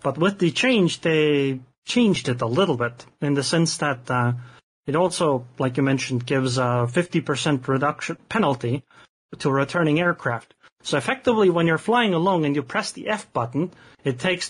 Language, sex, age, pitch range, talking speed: English, male, 30-49, 130-170 Hz, 175 wpm